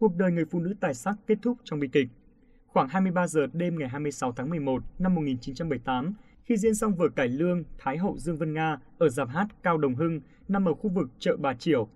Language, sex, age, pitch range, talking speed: Vietnamese, male, 20-39, 150-205 Hz, 230 wpm